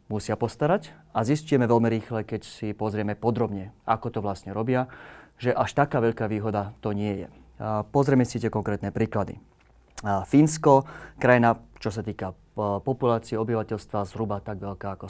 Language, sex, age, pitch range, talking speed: Slovak, male, 30-49, 105-115 Hz, 150 wpm